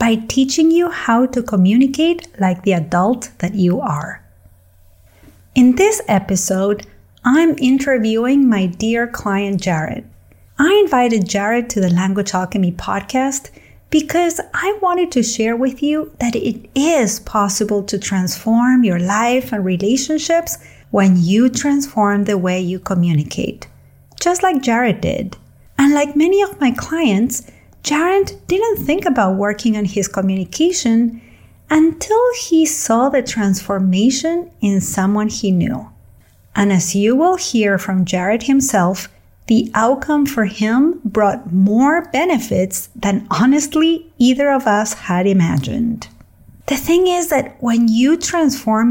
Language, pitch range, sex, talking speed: English, 195-285 Hz, female, 135 wpm